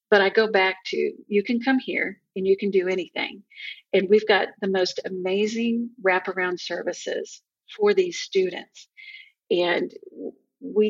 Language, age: English, 50-69